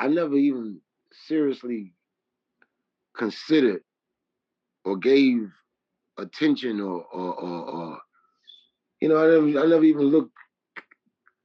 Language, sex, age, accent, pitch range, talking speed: English, male, 30-49, American, 115-145 Hz, 105 wpm